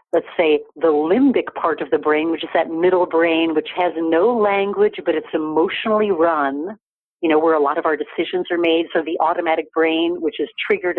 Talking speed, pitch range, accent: 205 wpm, 175-250 Hz, American